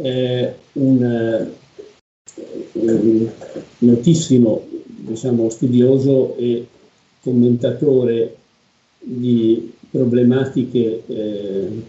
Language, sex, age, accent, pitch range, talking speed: Italian, male, 50-69, native, 120-140 Hz, 50 wpm